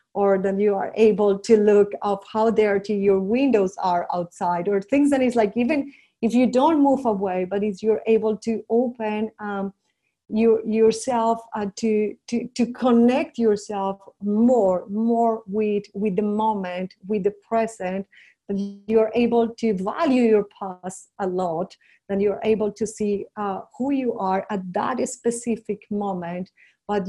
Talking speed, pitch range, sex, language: 160 wpm, 200-230 Hz, female, English